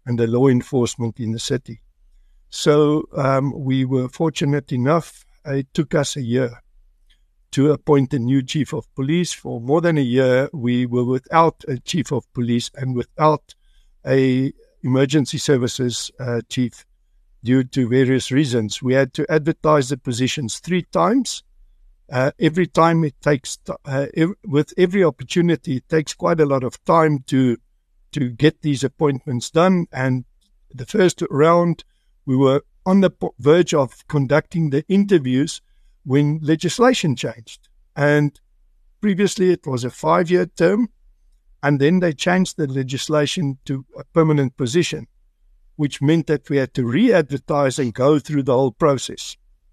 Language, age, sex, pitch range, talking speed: English, 60-79, male, 125-160 Hz, 150 wpm